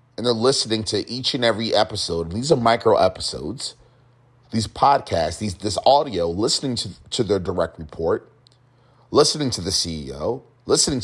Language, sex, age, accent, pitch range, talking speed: English, male, 30-49, American, 110-130 Hz, 160 wpm